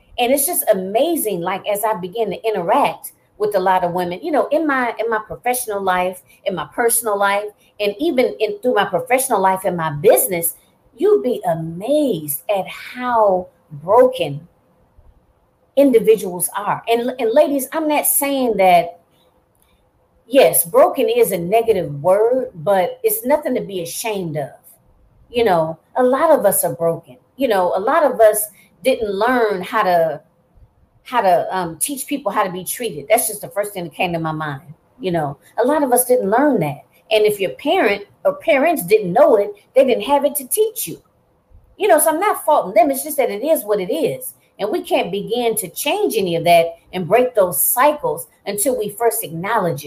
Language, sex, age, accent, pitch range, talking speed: English, female, 30-49, American, 180-275 Hz, 190 wpm